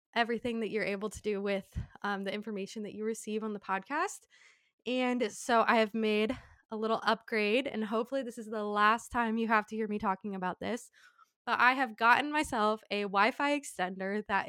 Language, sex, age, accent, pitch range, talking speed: English, female, 20-39, American, 205-235 Hz, 205 wpm